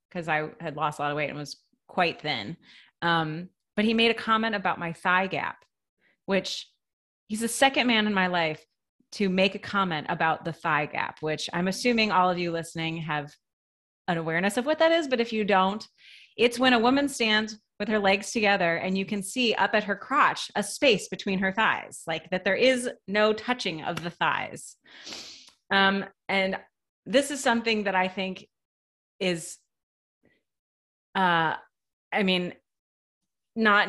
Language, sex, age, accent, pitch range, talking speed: English, female, 30-49, American, 170-220 Hz, 175 wpm